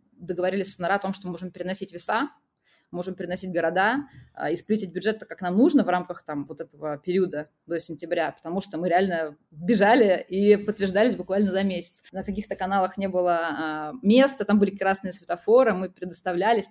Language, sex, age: Russian, female, 20-39